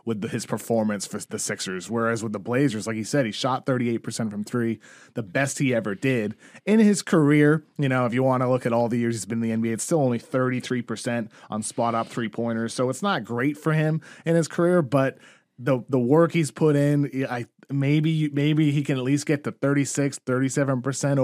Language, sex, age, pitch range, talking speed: English, male, 30-49, 115-140 Hz, 220 wpm